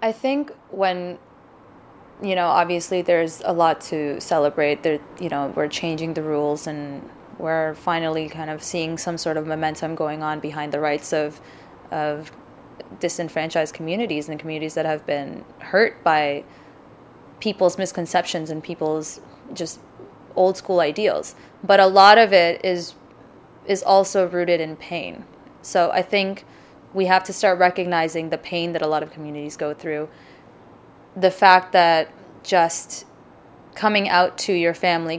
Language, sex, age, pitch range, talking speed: English, female, 20-39, 155-185 Hz, 150 wpm